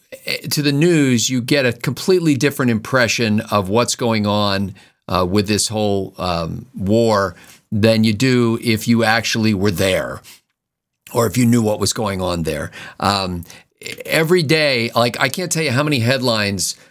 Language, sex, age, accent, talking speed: English, male, 50-69, American, 165 wpm